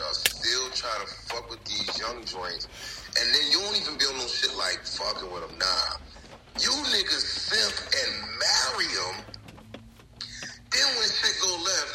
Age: 30-49